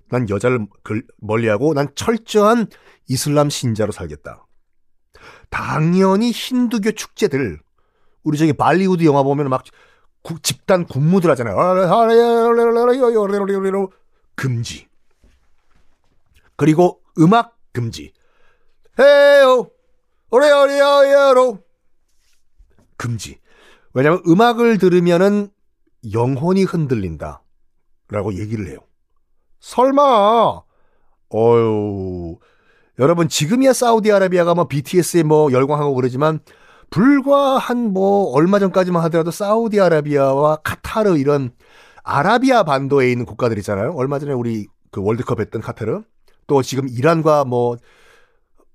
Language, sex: Korean, male